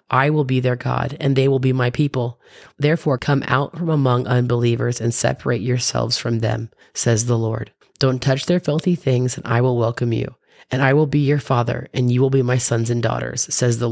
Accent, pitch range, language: American, 120-140 Hz, English